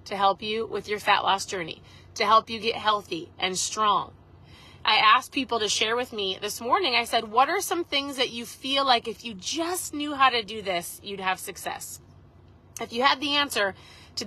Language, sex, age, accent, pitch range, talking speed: English, female, 30-49, American, 225-290 Hz, 215 wpm